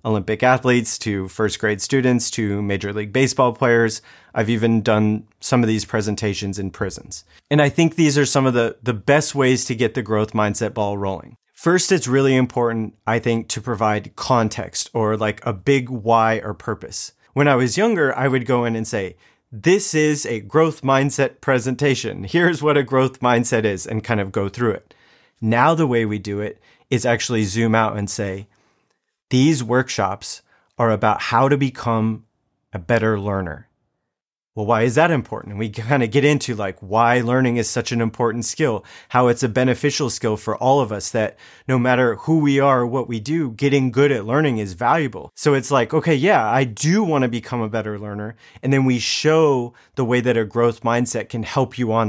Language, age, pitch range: English, 30-49, 110-135 Hz